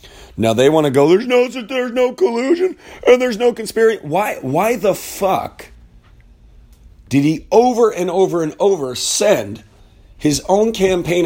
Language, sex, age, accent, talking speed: English, male, 40-59, American, 155 wpm